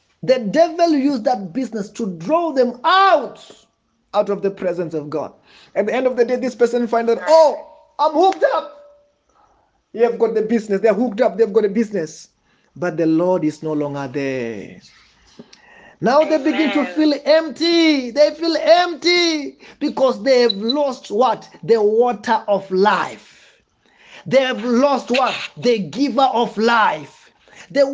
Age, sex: 30-49, male